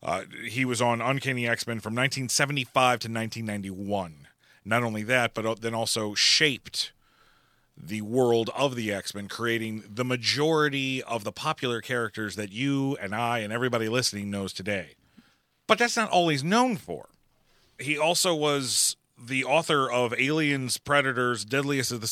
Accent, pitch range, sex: American, 105-135 Hz, male